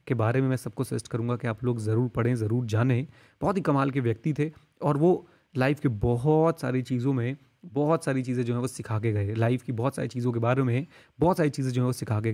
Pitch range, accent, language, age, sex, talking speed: 120-150 Hz, native, Hindi, 30-49, male, 260 wpm